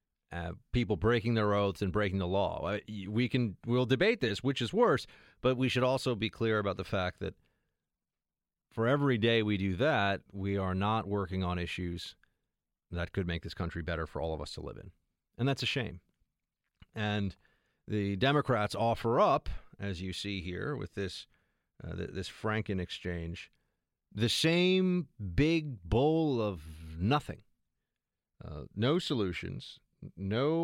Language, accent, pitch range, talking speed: English, American, 95-130 Hz, 155 wpm